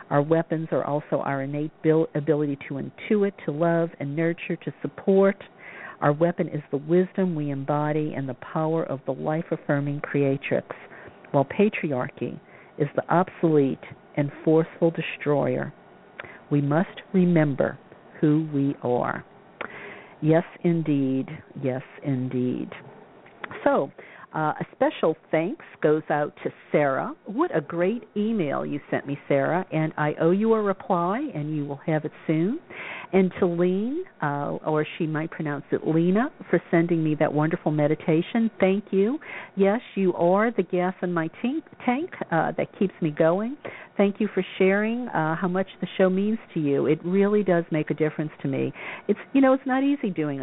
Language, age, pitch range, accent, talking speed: English, 50-69, 150-190 Hz, American, 160 wpm